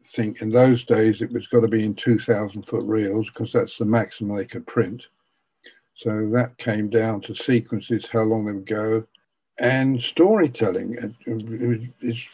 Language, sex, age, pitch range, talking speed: English, male, 60-79, 110-120 Hz, 165 wpm